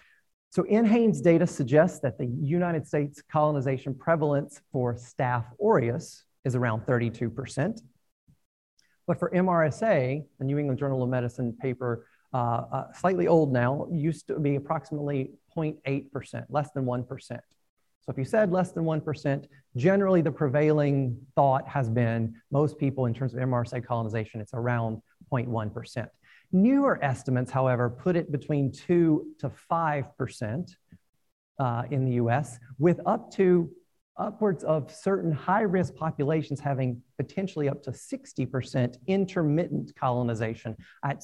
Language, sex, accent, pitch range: English, male, American, 125-160 Hz